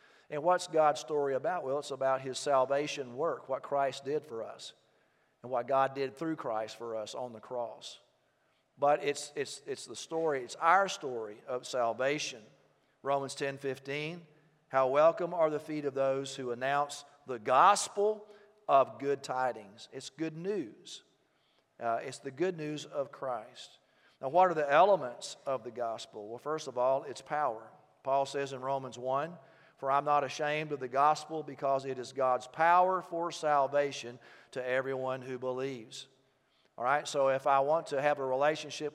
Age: 40-59